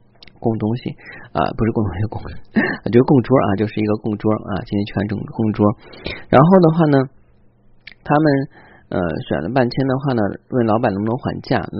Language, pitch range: Chinese, 105-135 Hz